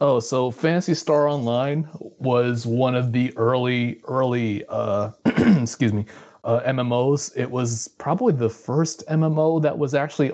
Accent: American